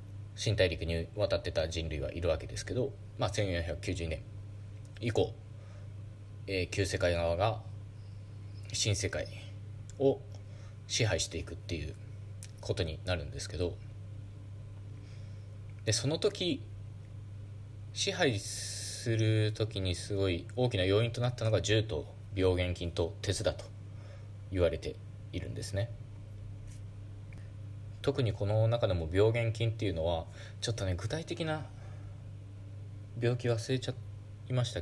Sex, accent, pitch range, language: male, native, 100-105 Hz, Japanese